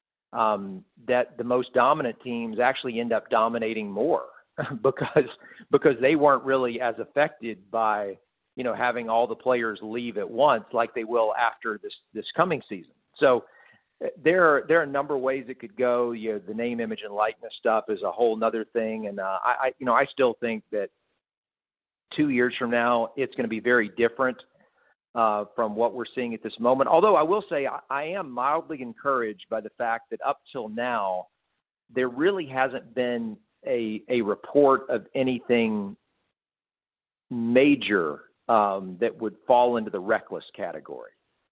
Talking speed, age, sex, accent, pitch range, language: 180 wpm, 50-69, male, American, 110-130 Hz, English